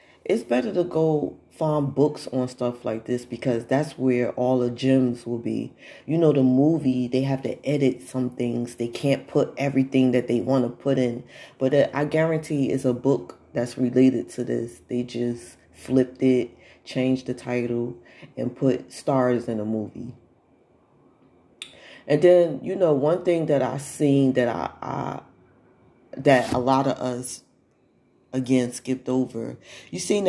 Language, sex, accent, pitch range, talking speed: English, female, American, 125-145 Hz, 160 wpm